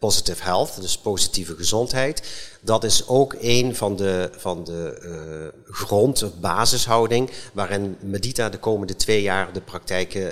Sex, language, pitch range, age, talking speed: male, Dutch, 90-115 Hz, 40-59, 135 wpm